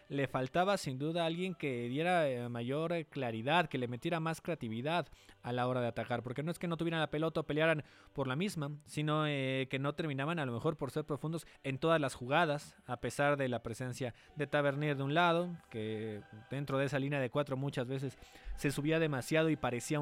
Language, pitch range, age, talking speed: Spanish, 130-160 Hz, 20-39, 215 wpm